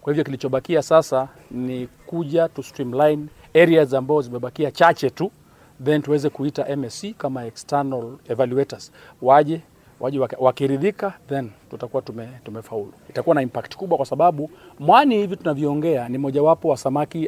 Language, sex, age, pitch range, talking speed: Swahili, male, 40-59, 130-165 Hz, 140 wpm